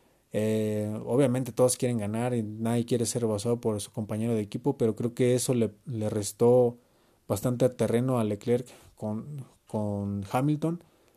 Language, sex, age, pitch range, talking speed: Spanish, male, 30-49, 110-130 Hz, 160 wpm